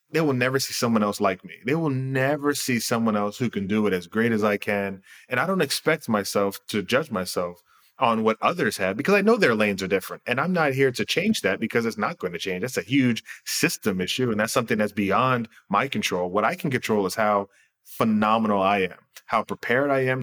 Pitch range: 105-130 Hz